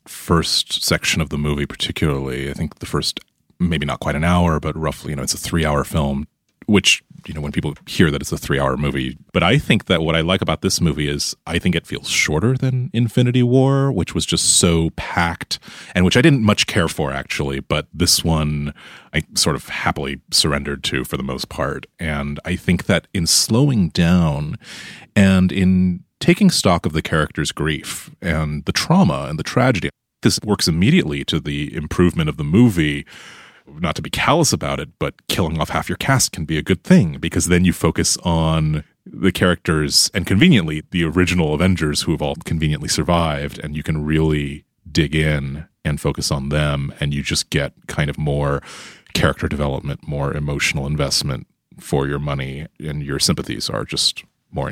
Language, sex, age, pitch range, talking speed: English, male, 30-49, 75-90 Hz, 190 wpm